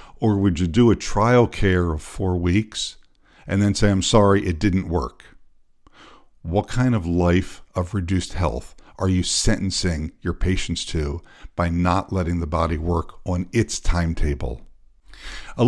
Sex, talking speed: male, 155 wpm